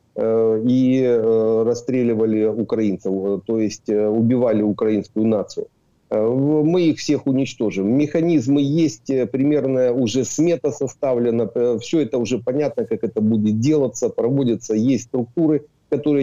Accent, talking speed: native, 110 wpm